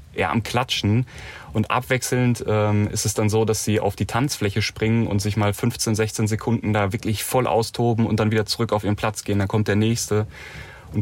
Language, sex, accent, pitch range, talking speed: German, male, German, 100-110 Hz, 210 wpm